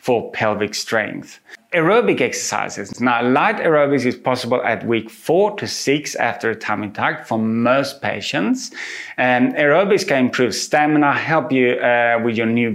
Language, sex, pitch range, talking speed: English, male, 110-140 Hz, 155 wpm